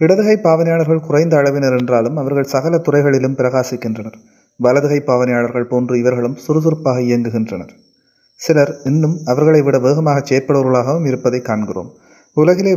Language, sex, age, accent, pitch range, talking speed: Tamil, male, 30-49, native, 125-155 Hz, 115 wpm